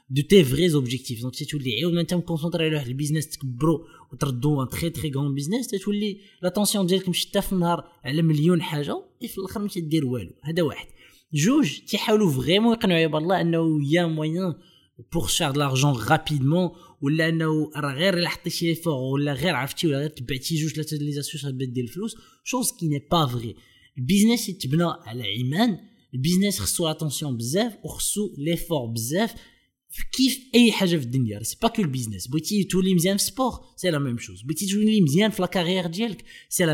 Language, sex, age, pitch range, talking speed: Arabic, male, 20-39, 140-185 Hz, 135 wpm